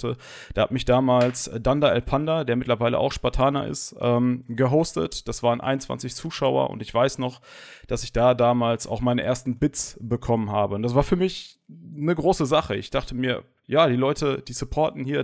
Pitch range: 120-140 Hz